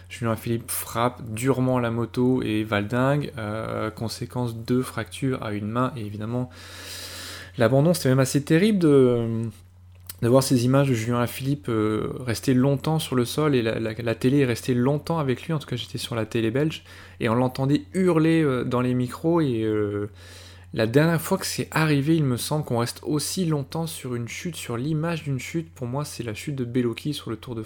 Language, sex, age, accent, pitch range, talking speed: French, male, 20-39, French, 110-150 Hz, 205 wpm